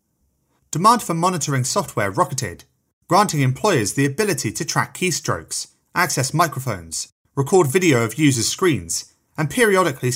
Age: 30-49